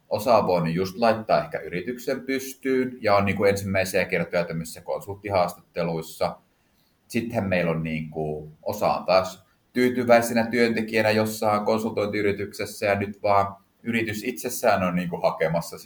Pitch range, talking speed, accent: 85-110 Hz, 130 wpm, native